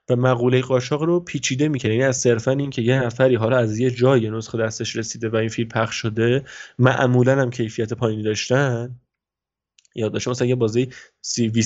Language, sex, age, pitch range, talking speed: Persian, male, 20-39, 110-150 Hz, 185 wpm